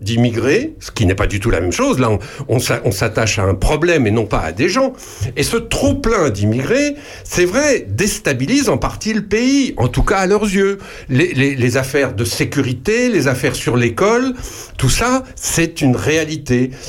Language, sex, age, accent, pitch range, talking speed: French, male, 60-79, French, 120-185 Hz, 200 wpm